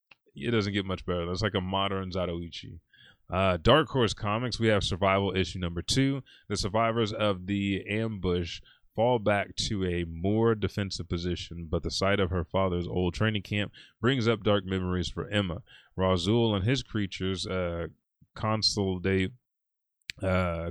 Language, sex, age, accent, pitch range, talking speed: English, male, 30-49, American, 90-110 Hz, 155 wpm